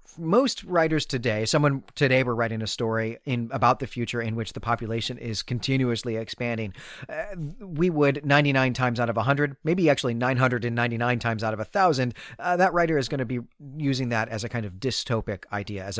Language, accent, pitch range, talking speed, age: English, American, 115-140 Hz, 190 wpm, 40-59